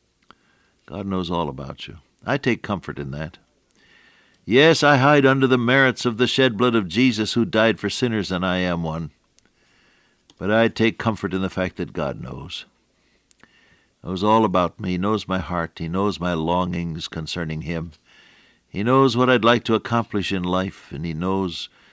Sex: male